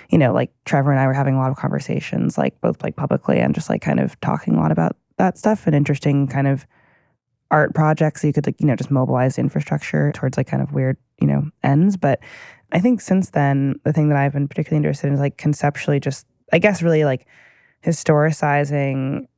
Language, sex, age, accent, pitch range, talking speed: English, female, 20-39, American, 130-150 Hz, 225 wpm